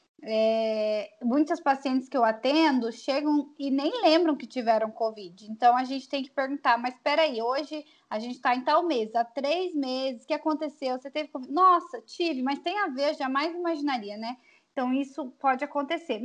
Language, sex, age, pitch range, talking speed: Portuguese, female, 10-29, 245-310 Hz, 185 wpm